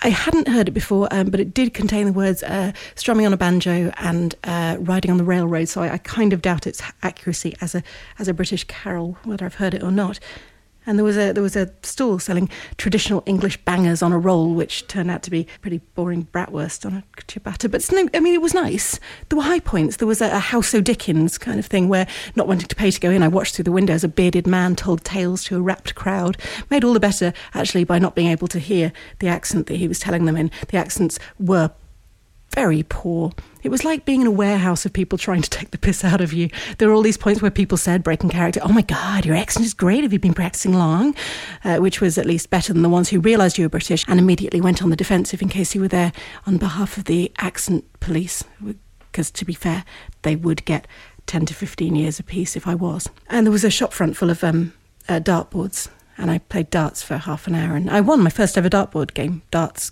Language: English